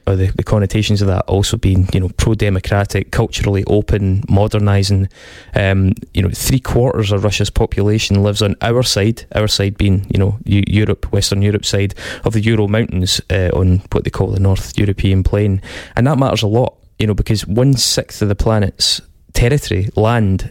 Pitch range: 100-115 Hz